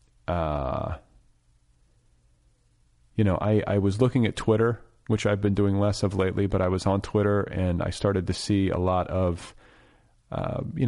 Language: English